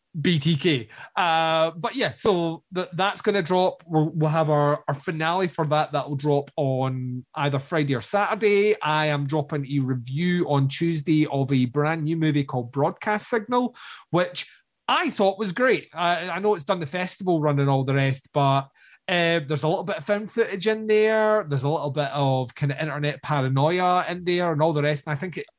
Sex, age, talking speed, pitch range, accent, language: male, 30-49, 205 wpm, 140-185 Hz, British, English